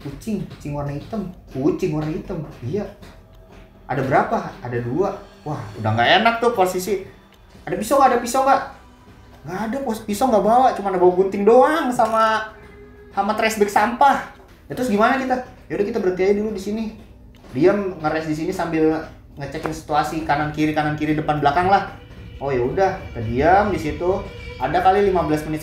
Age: 20-39